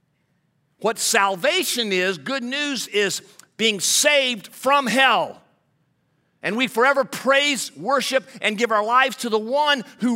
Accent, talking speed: American, 135 wpm